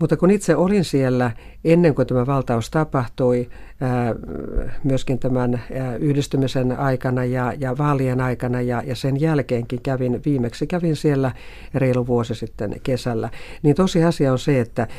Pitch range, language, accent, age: 120-145 Hz, Finnish, native, 50-69